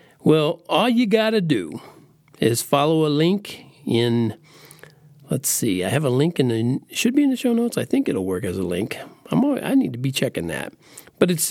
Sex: male